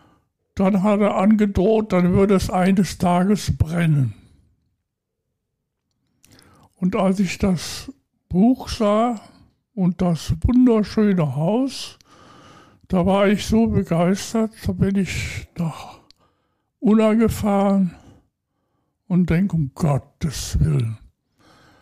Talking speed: 100 wpm